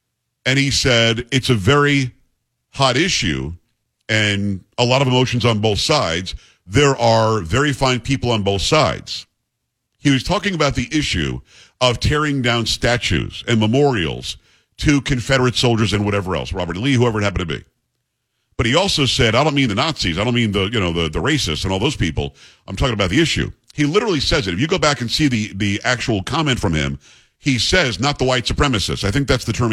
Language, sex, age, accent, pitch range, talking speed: English, male, 50-69, American, 105-140 Hz, 210 wpm